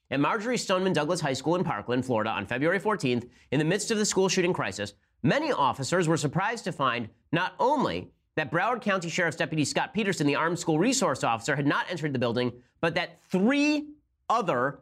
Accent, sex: American, male